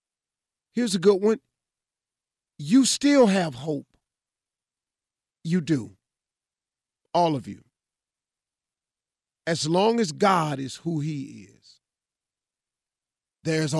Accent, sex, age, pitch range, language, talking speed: American, male, 40-59, 130-175 Hz, English, 95 wpm